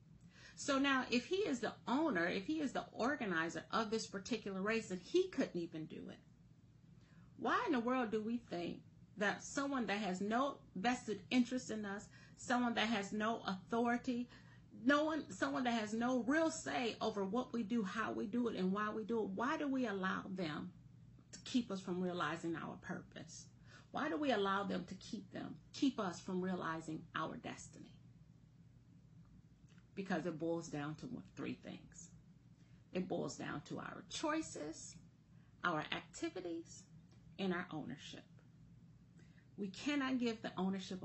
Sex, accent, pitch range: female, American, 170-245 Hz